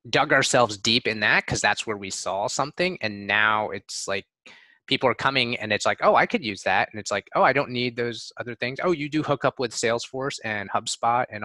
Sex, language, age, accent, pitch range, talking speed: male, English, 20-39, American, 100-120 Hz, 240 wpm